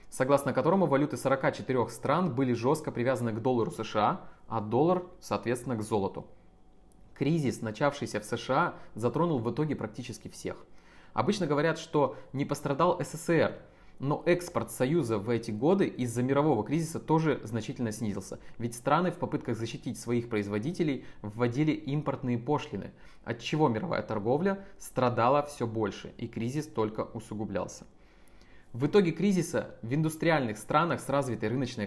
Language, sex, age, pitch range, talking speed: Russian, male, 20-39, 110-145 Hz, 135 wpm